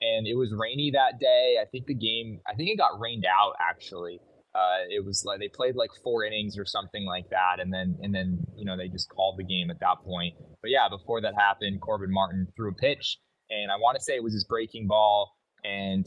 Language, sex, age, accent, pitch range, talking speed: English, male, 20-39, American, 95-125 Hz, 245 wpm